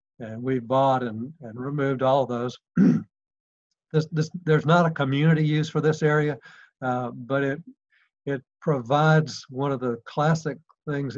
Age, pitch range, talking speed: 60-79, 125-150 Hz, 150 wpm